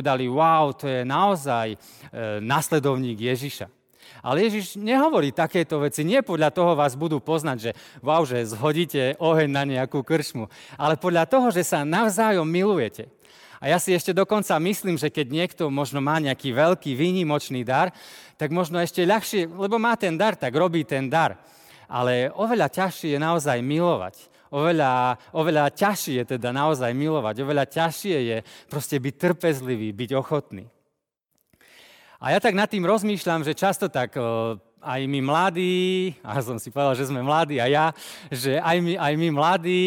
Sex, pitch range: male, 140-180 Hz